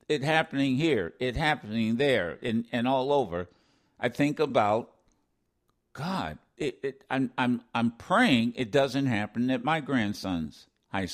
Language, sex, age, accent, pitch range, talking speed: English, male, 60-79, American, 105-150 Hz, 145 wpm